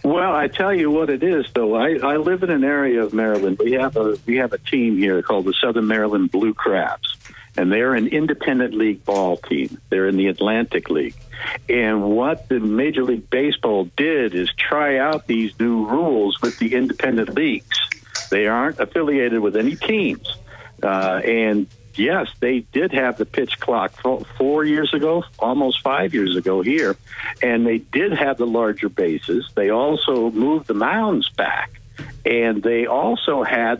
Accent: American